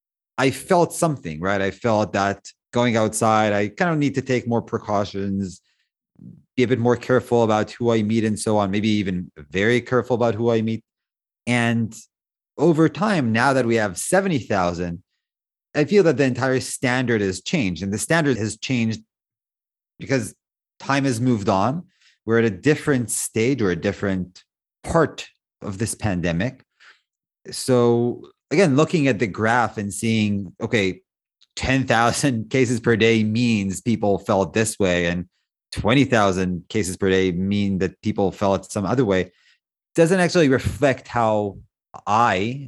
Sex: male